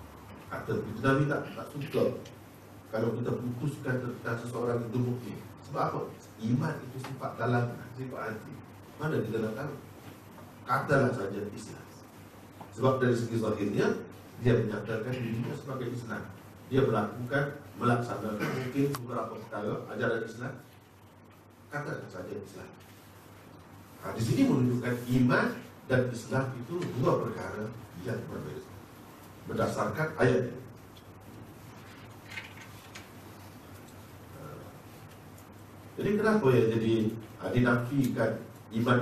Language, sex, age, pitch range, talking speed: Malay, male, 50-69, 110-140 Hz, 105 wpm